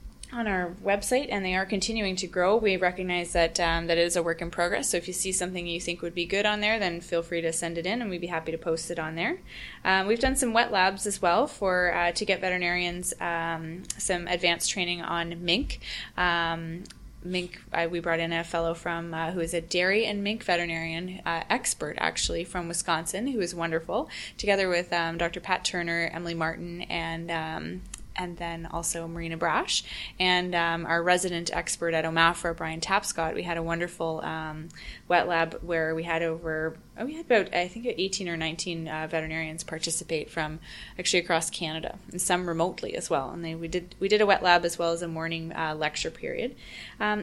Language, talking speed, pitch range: English, 210 wpm, 165-185 Hz